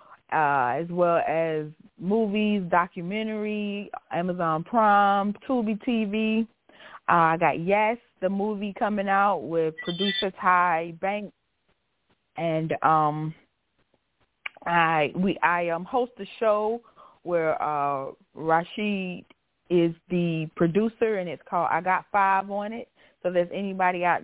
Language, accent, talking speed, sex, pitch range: English, American, 125 wpm, female, 165-215 Hz